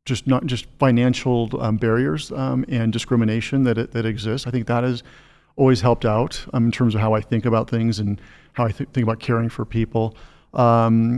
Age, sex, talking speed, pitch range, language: 40-59, male, 205 wpm, 110-125 Hz, English